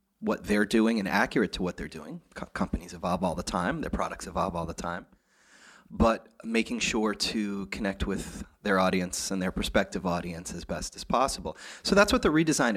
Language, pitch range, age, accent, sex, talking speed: English, 115-170 Hz, 30-49, American, male, 195 wpm